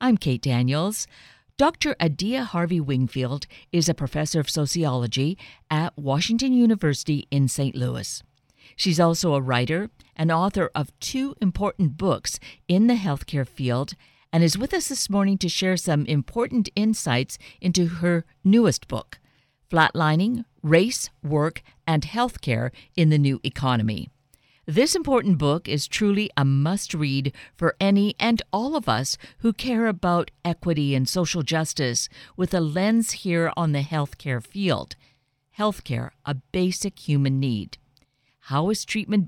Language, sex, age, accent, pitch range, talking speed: English, female, 50-69, American, 140-195 Hz, 140 wpm